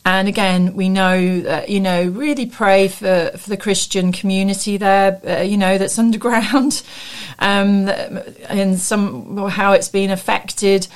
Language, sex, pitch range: English, female, 170-200 Hz